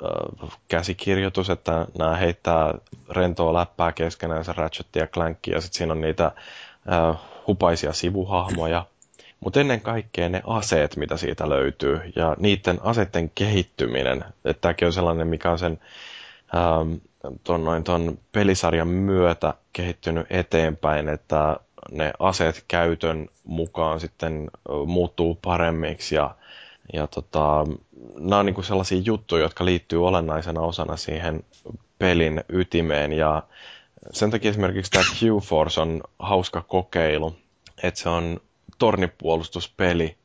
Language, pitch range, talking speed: Finnish, 80-90 Hz, 120 wpm